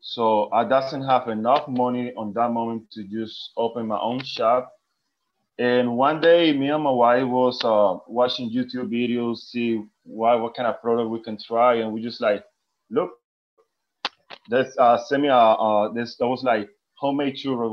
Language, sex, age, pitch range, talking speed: English, male, 20-39, 120-145 Hz, 160 wpm